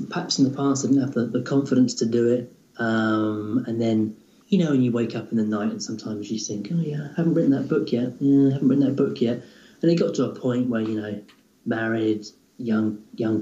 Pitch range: 115-140 Hz